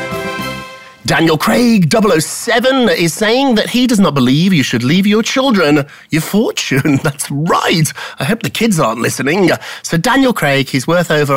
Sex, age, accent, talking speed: male, 30-49, British, 165 wpm